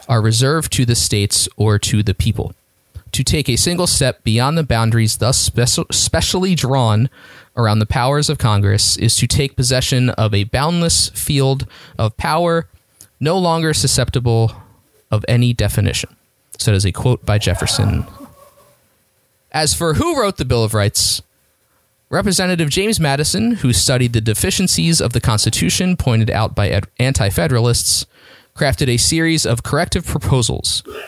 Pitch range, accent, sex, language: 105-135 Hz, American, male, English